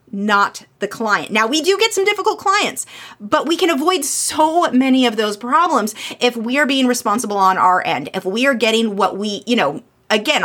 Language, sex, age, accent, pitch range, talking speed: English, female, 30-49, American, 220-300 Hz, 205 wpm